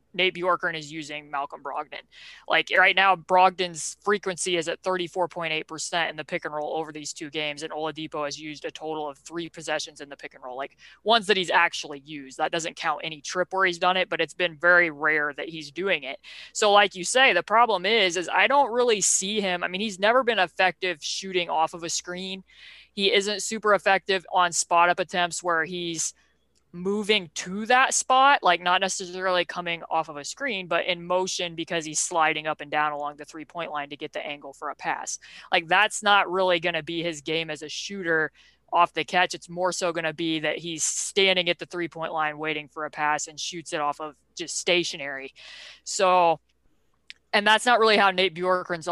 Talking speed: 215 wpm